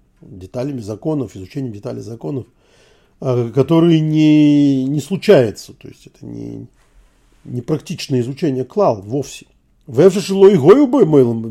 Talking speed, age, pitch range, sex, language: 105 wpm, 40-59, 115-150 Hz, male, Russian